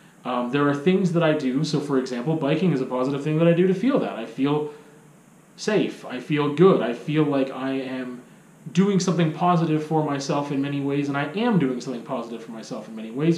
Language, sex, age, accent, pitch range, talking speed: English, male, 30-49, American, 135-175 Hz, 230 wpm